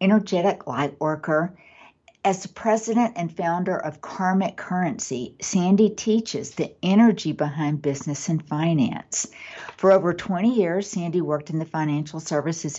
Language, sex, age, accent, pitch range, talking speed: English, female, 60-79, American, 150-190 Hz, 135 wpm